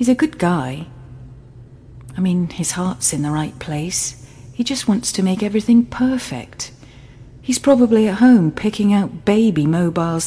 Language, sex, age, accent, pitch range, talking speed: English, female, 40-59, British, 130-185 Hz, 160 wpm